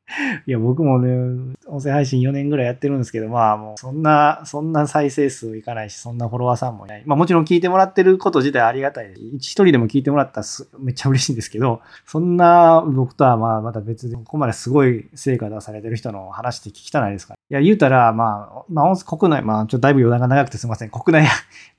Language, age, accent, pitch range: Japanese, 20-39, native, 115-155 Hz